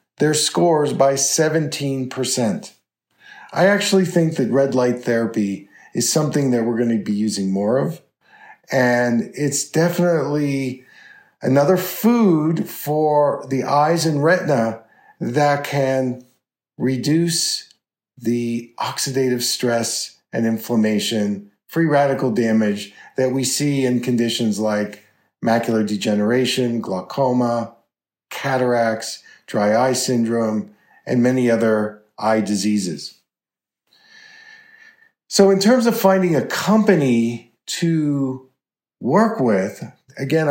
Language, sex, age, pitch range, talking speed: English, male, 50-69, 120-160 Hz, 105 wpm